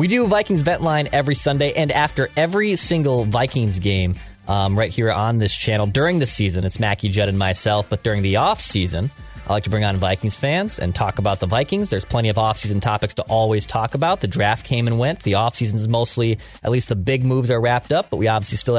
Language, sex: English, male